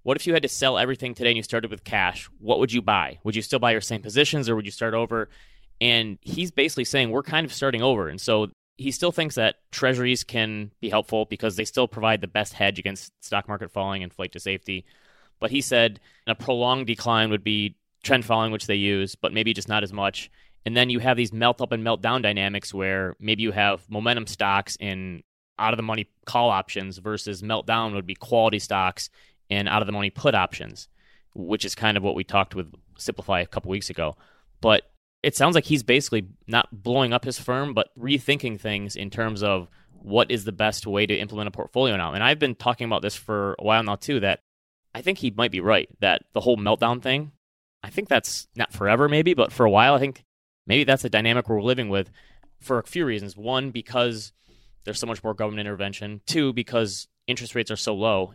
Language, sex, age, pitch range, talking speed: English, male, 20-39, 100-125 Hz, 225 wpm